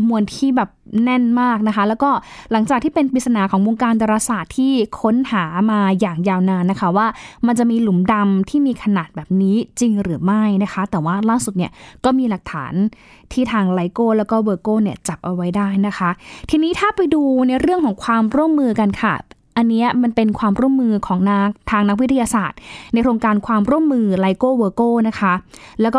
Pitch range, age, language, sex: 200-250 Hz, 20-39, Thai, female